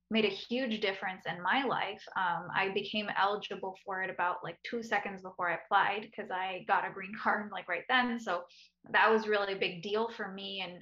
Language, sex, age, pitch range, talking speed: English, female, 10-29, 185-220 Hz, 215 wpm